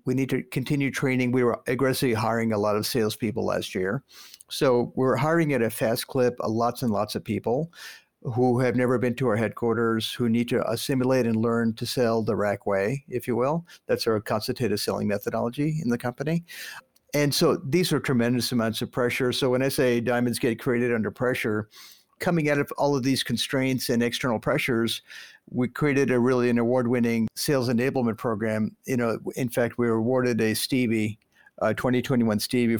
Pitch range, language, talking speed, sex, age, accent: 115-130 Hz, English, 190 wpm, male, 50-69, American